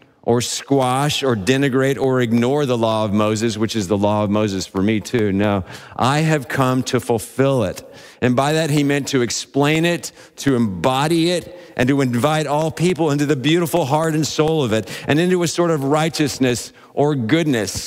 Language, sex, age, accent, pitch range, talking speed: English, male, 50-69, American, 115-145 Hz, 195 wpm